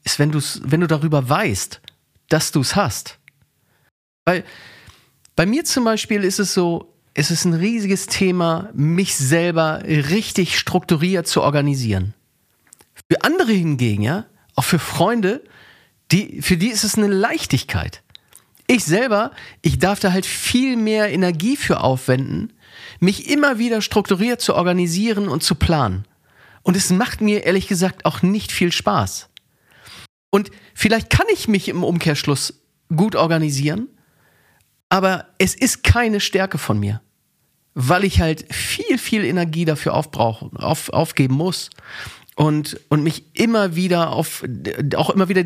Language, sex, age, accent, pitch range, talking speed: German, male, 40-59, German, 145-195 Hz, 145 wpm